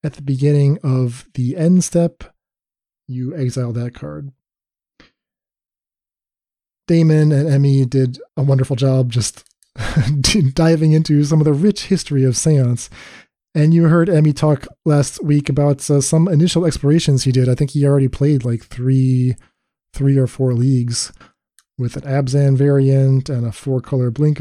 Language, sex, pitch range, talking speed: English, male, 130-155 Hz, 150 wpm